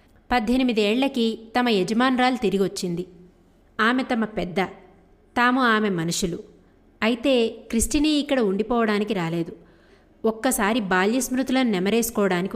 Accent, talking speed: native, 105 wpm